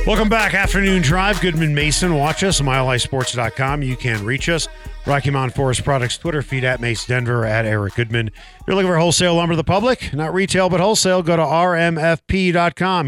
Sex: male